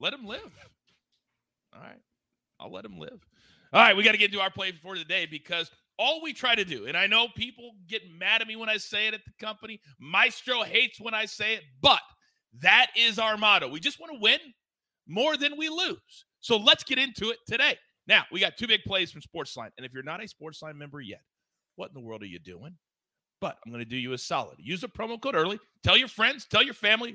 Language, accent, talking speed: English, American, 245 wpm